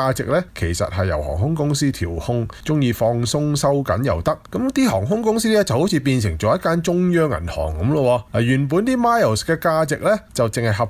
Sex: male